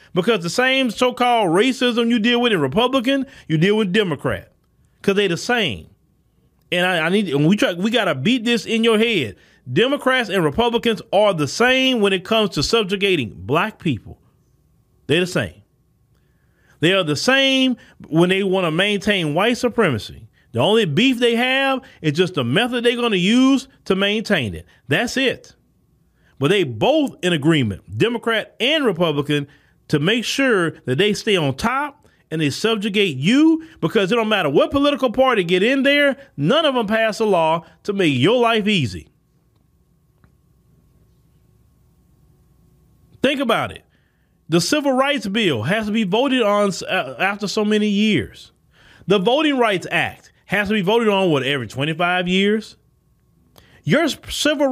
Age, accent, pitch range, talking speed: 30-49, American, 170-245 Hz, 165 wpm